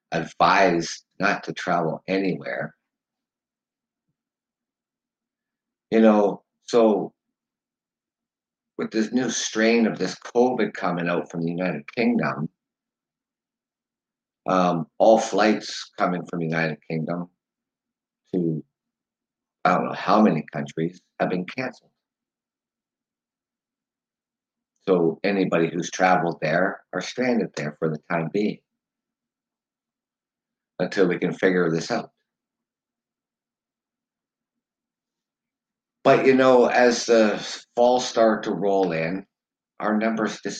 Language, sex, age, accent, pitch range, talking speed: English, male, 60-79, American, 85-120 Hz, 105 wpm